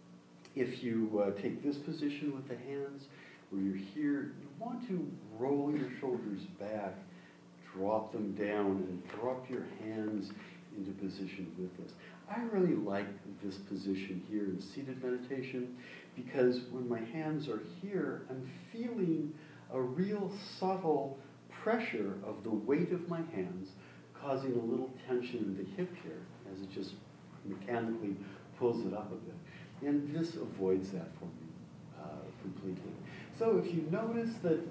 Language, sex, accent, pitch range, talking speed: English, male, American, 100-160 Hz, 150 wpm